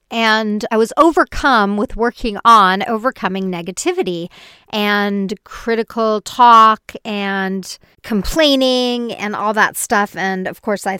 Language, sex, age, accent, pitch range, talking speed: English, female, 40-59, American, 200-245 Hz, 120 wpm